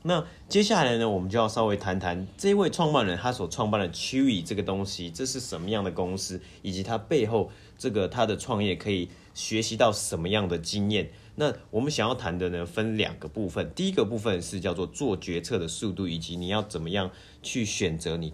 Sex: male